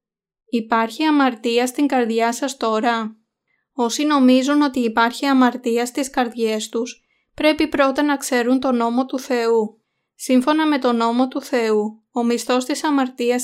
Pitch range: 230-265 Hz